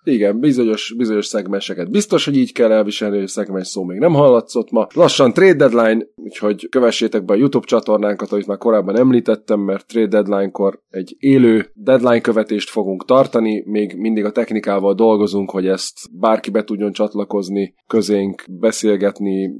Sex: male